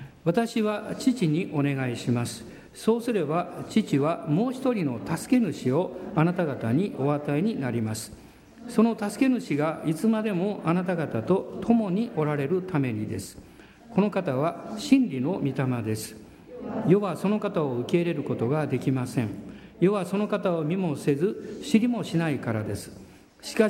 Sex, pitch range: male, 140-205 Hz